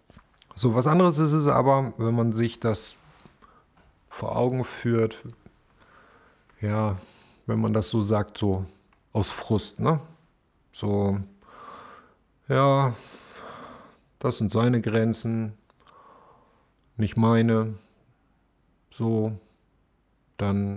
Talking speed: 95 wpm